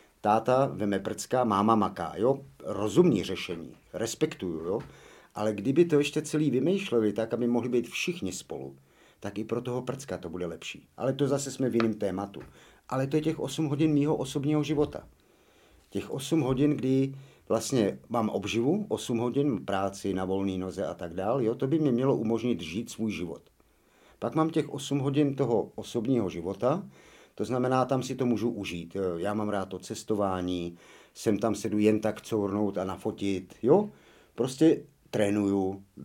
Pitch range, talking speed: 95-130 Hz, 170 wpm